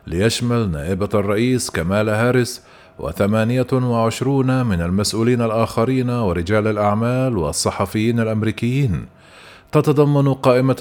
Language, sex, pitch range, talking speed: Arabic, male, 105-125 Hz, 85 wpm